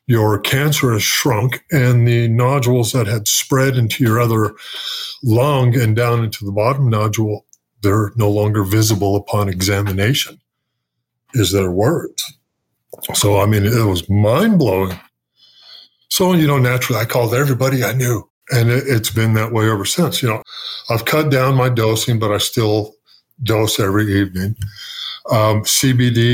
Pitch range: 105-125 Hz